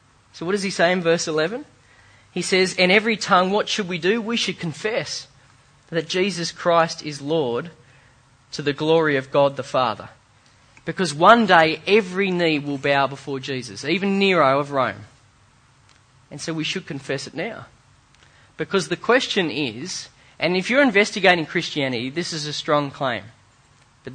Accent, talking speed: Australian, 165 wpm